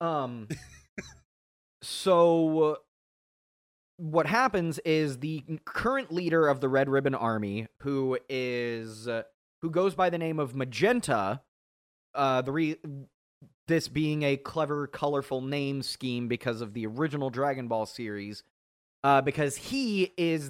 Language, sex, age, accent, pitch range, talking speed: English, male, 20-39, American, 110-160 Hz, 130 wpm